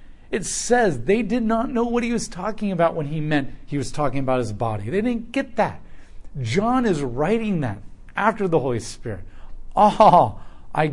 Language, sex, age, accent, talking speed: English, male, 40-59, American, 185 wpm